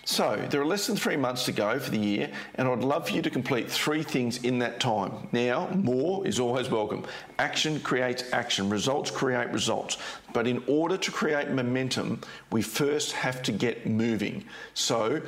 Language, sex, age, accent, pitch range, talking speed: English, male, 40-59, Australian, 115-150 Hz, 190 wpm